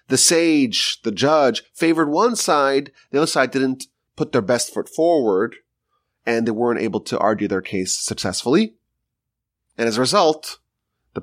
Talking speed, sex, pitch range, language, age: 160 wpm, male, 105-165 Hz, English, 30-49